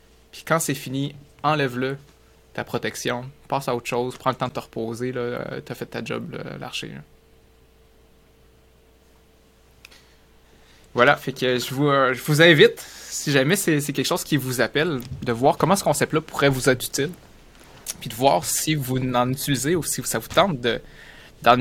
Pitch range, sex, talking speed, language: 115-145 Hz, male, 180 wpm, French